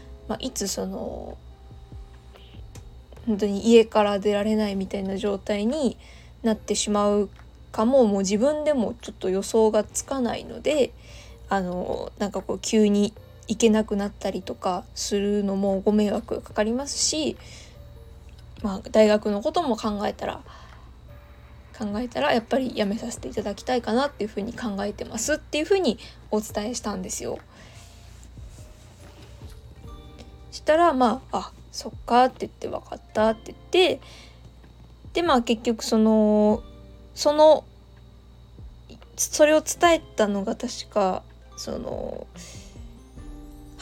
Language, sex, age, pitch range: Japanese, female, 20-39, 190-245 Hz